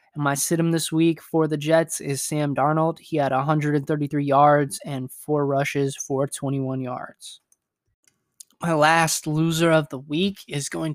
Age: 20-39